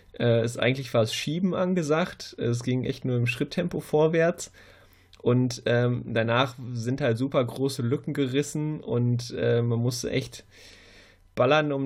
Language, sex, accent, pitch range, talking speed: German, male, German, 120-135 Hz, 140 wpm